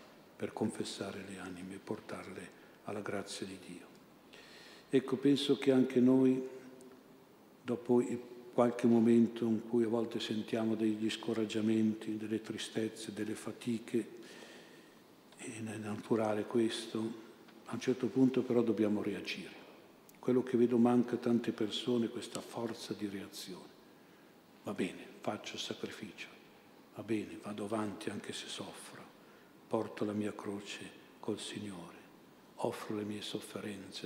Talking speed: 130 wpm